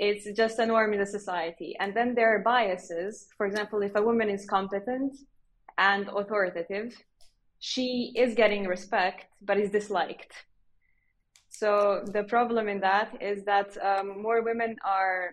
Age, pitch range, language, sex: 20-39, 190-225 Hz, English, female